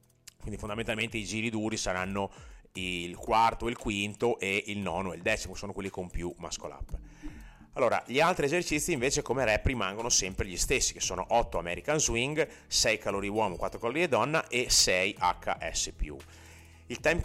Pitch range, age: 95-115 Hz, 30-49